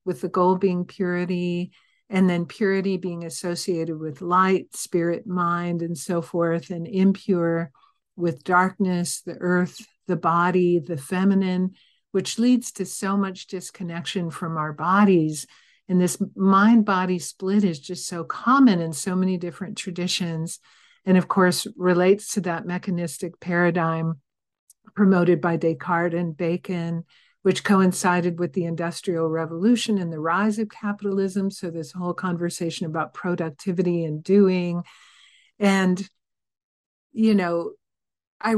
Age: 50-69